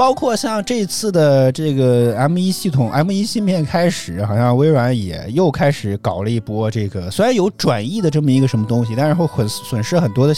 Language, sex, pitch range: Chinese, male, 110-160 Hz